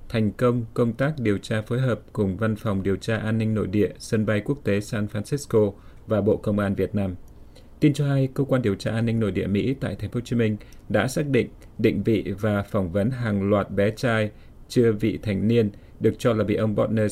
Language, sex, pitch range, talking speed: Vietnamese, male, 105-120 Hz, 240 wpm